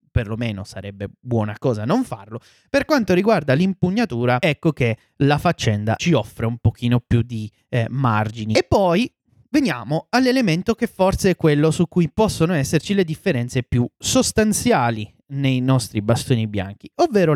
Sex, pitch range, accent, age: male, 120-195 Hz, native, 30-49